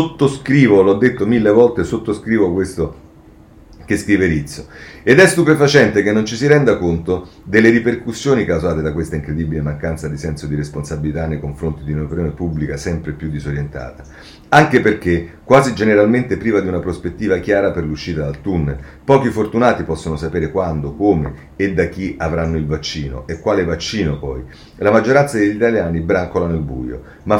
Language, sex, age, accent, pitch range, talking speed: Italian, male, 40-59, native, 80-105 Hz, 165 wpm